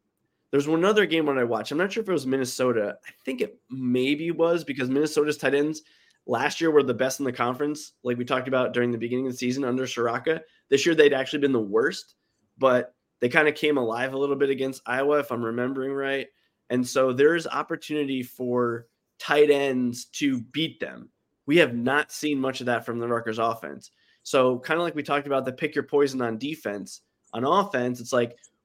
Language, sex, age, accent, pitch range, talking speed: English, male, 20-39, American, 125-150 Hz, 215 wpm